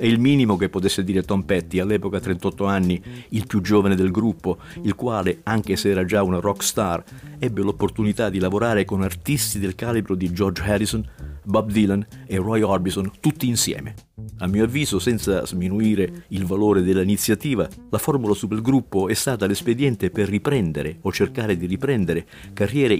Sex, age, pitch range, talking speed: male, 50-69, 95-115 Hz, 165 wpm